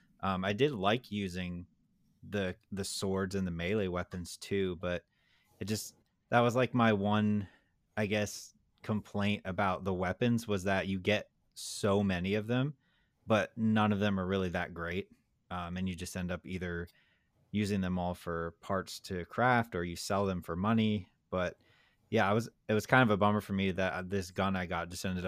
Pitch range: 90-105 Hz